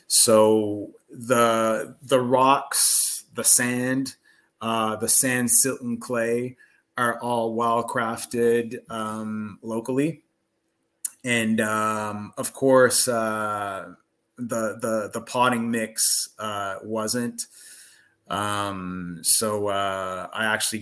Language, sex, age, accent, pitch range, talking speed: English, male, 30-49, American, 105-120 Hz, 100 wpm